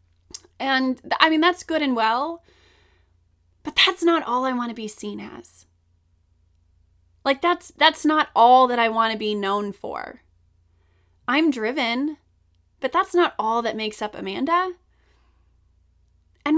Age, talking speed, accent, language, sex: 20-39, 145 wpm, American, English, female